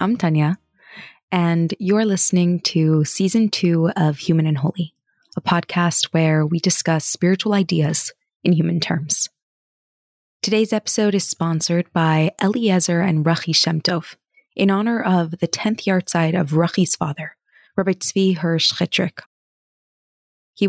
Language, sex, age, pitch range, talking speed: English, female, 20-39, 160-195 Hz, 135 wpm